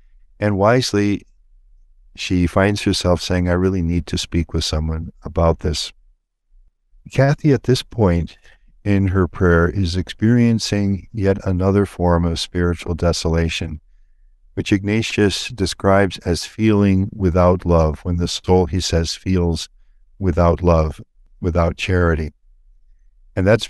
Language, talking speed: English, 125 wpm